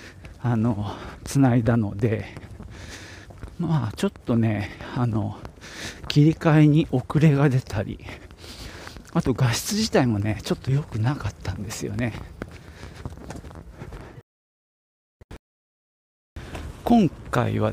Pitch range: 95-140 Hz